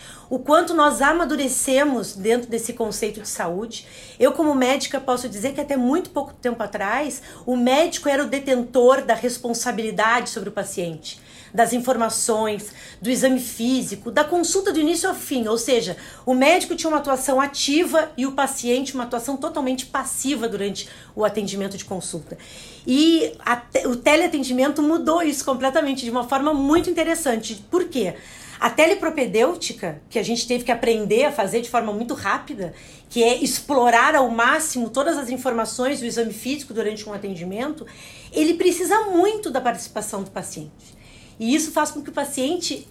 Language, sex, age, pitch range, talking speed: Portuguese, female, 40-59, 235-305 Hz, 160 wpm